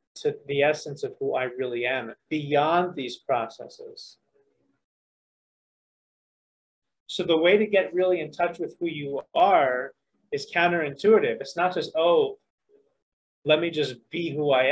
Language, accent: English, American